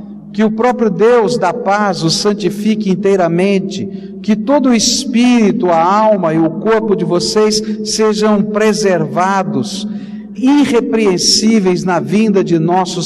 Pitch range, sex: 170-215 Hz, male